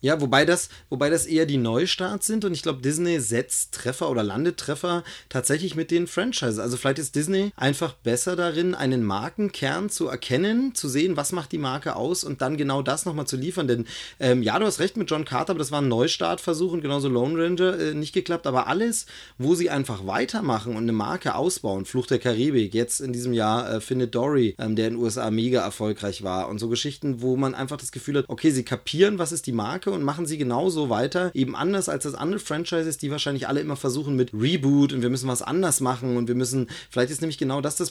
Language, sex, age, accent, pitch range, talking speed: German, male, 30-49, German, 125-165 Hz, 230 wpm